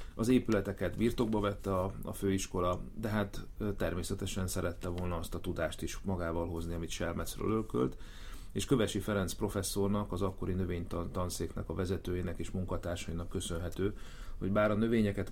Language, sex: Hungarian, male